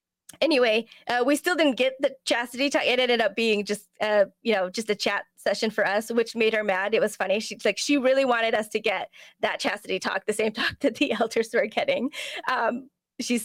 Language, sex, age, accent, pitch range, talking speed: English, female, 20-39, American, 205-275 Hz, 230 wpm